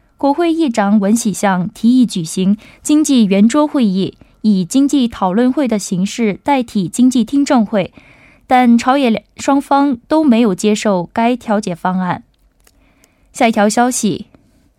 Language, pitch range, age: Korean, 200-255 Hz, 20-39